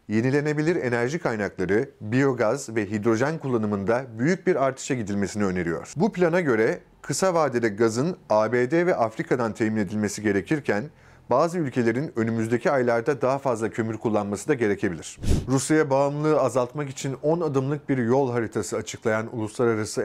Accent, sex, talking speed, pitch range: native, male, 135 wpm, 110-145 Hz